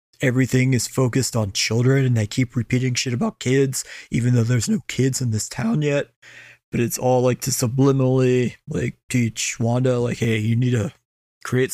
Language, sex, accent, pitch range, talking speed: English, male, American, 120-135 Hz, 185 wpm